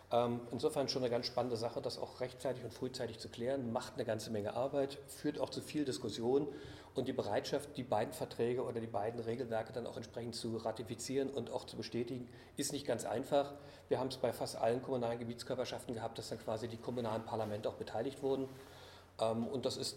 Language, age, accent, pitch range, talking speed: German, 40-59, German, 110-130 Hz, 200 wpm